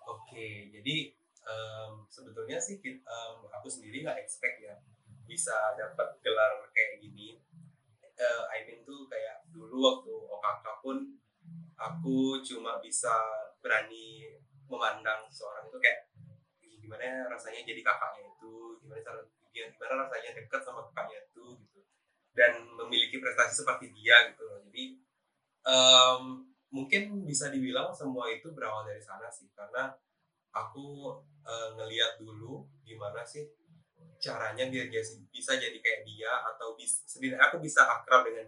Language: Indonesian